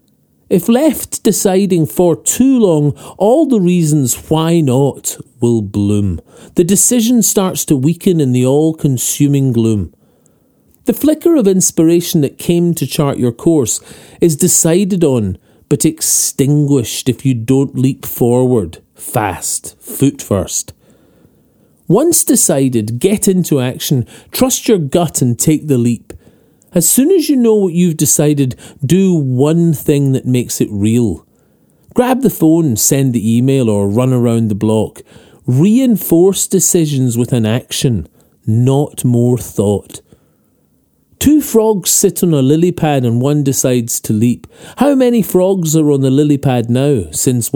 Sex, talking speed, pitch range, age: male, 145 wpm, 125-180 Hz, 40-59